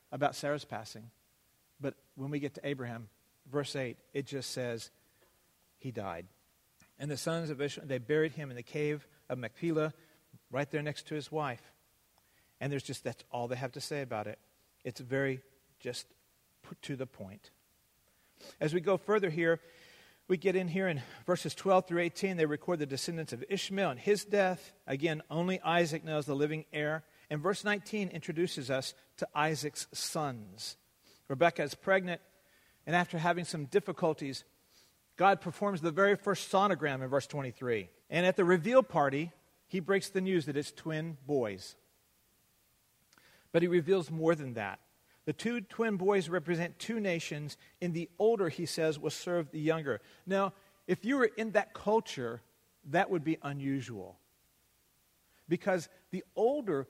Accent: American